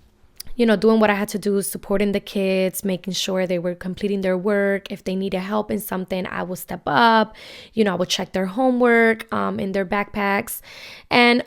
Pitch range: 195-230 Hz